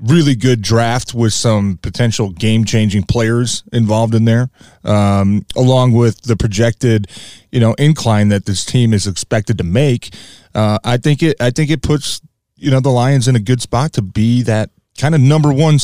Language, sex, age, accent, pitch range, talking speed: English, male, 30-49, American, 105-125 Hz, 185 wpm